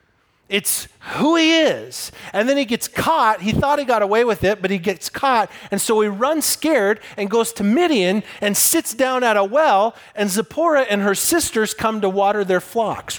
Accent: American